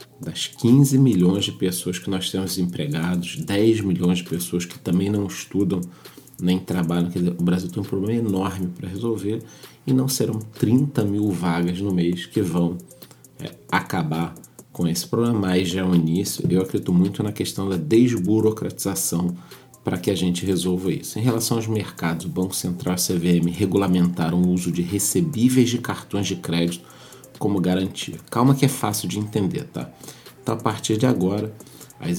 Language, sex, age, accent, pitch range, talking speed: Portuguese, male, 40-59, Brazilian, 90-115 Hz, 175 wpm